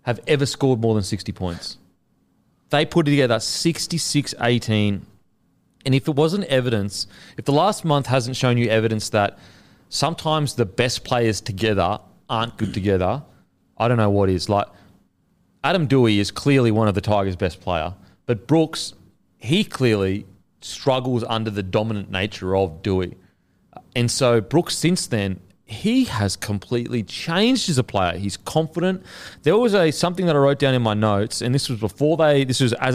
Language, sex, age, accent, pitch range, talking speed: English, male, 30-49, Australian, 105-145 Hz, 170 wpm